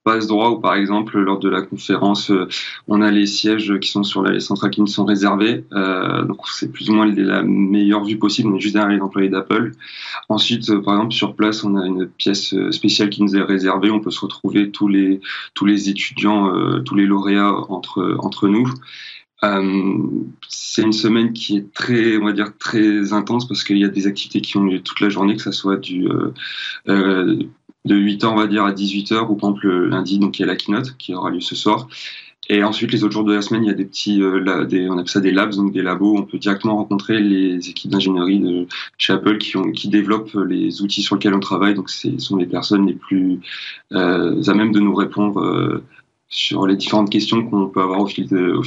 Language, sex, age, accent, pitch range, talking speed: French, male, 20-39, French, 95-105 Hz, 240 wpm